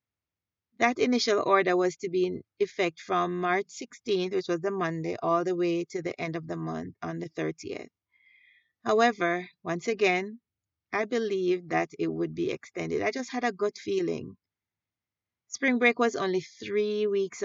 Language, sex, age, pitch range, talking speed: English, female, 30-49, 160-215 Hz, 170 wpm